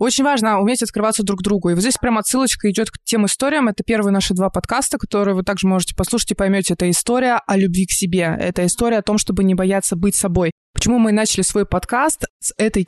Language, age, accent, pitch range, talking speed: Russian, 20-39, native, 185-230 Hz, 235 wpm